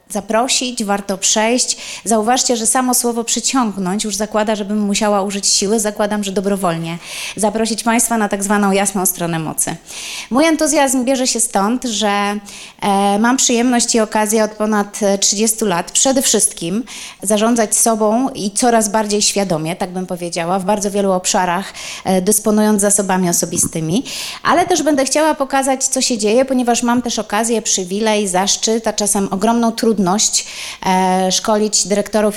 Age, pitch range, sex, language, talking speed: 30-49, 195-230 Hz, female, Polish, 145 wpm